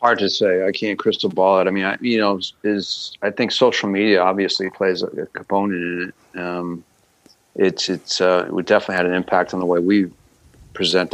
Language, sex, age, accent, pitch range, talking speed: English, male, 40-59, American, 85-95 Hz, 210 wpm